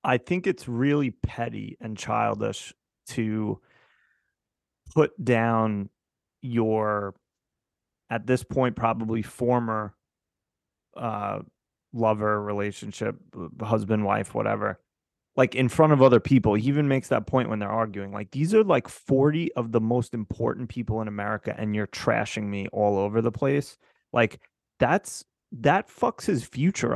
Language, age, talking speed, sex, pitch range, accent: English, 30-49, 140 wpm, male, 110-135 Hz, American